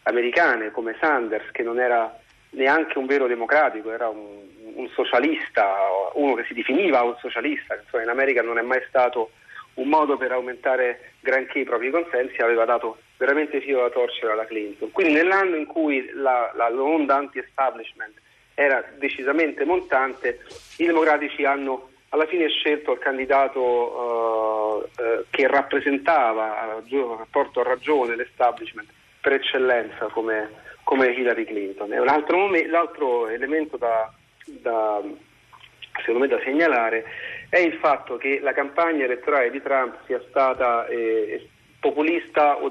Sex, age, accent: male, 40-59, native